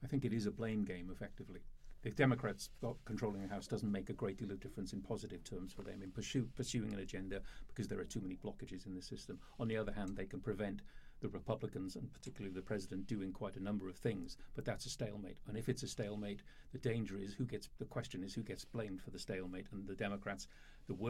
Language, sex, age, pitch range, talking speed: English, male, 50-69, 95-115 Hz, 240 wpm